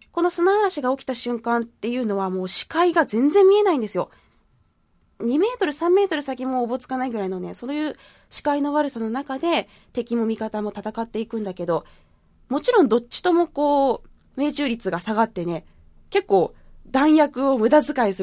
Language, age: Japanese, 20-39